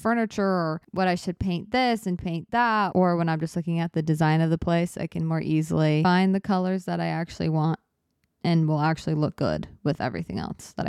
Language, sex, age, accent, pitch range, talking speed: English, female, 20-39, American, 165-195 Hz, 225 wpm